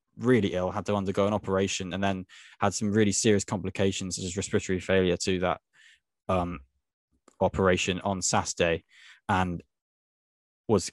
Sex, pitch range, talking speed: male, 90-105 Hz, 150 wpm